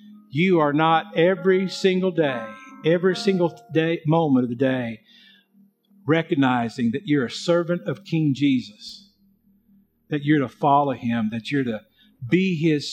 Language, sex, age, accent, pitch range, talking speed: English, male, 50-69, American, 140-200 Hz, 145 wpm